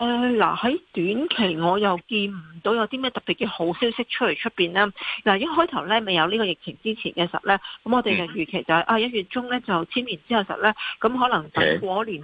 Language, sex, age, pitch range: Chinese, female, 40-59, 175-225 Hz